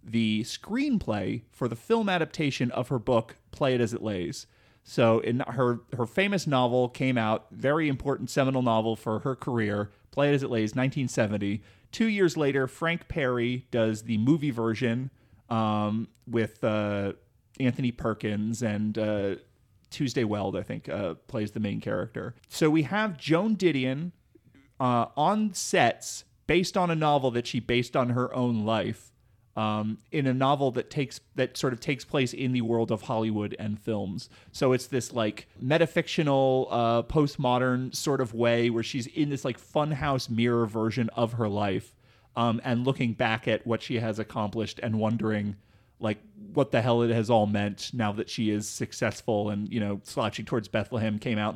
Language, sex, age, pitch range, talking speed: English, male, 30-49, 110-135 Hz, 175 wpm